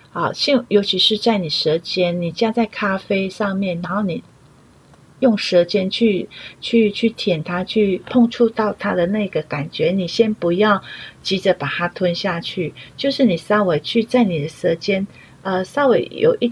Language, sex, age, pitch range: Chinese, female, 40-59, 175-225 Hz